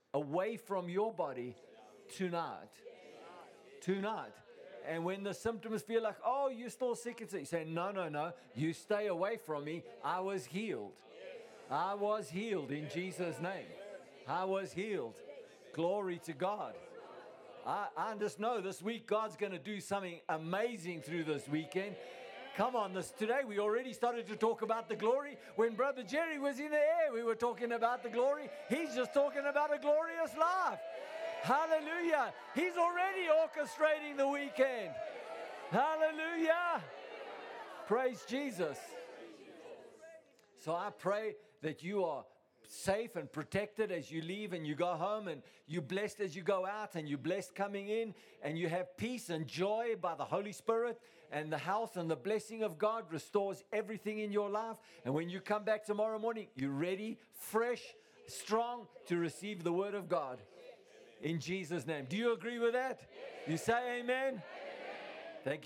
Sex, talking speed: male, 160 wpm